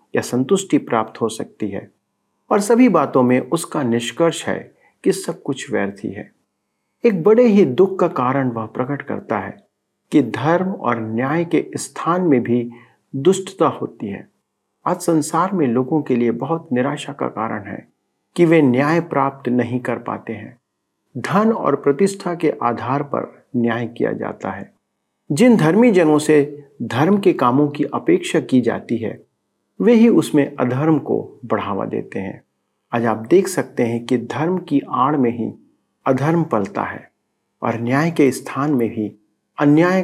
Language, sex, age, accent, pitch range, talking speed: Hindi, male, 50-69, native, 120-175 Hz, 160 wpm